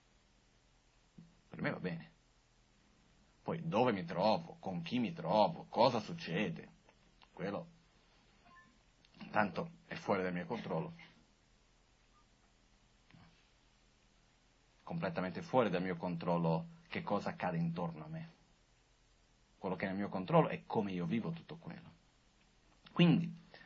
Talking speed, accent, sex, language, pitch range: 115 wpm, native, male, Italian, 105-170 Hz